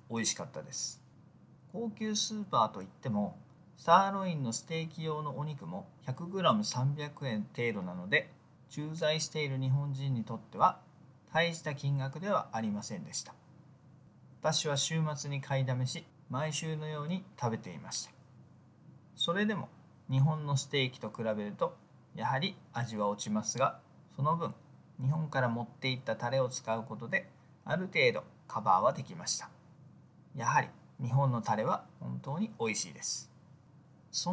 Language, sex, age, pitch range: Japanese, male, 40-59, 130-170 Hz